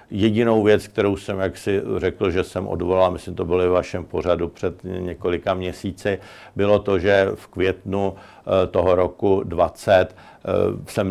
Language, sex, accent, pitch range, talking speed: Czech, male, native, 90-95 Hz, 150 wpm